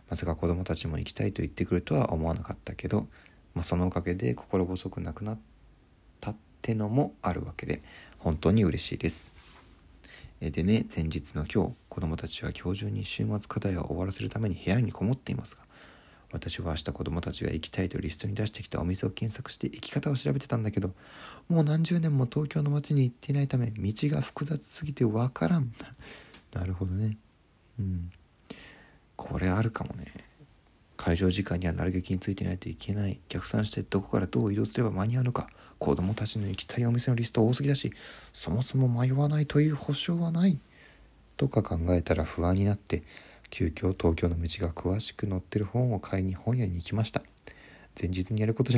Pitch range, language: 90-120 Hz, Japanese